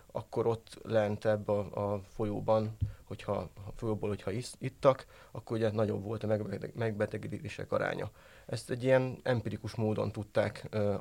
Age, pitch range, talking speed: 30-49, 105-125 Hz, 140 wpm